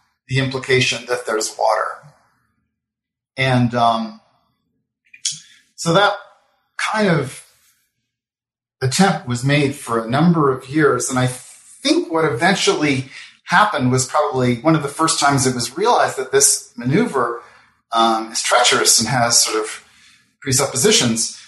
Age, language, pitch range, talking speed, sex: 40-59, English, 125-175 Hz, 130 wpm, male